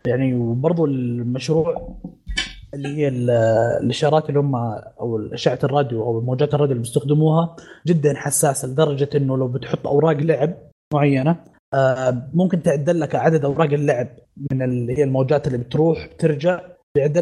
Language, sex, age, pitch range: Arabic, male, 20-39, 135-155 Hz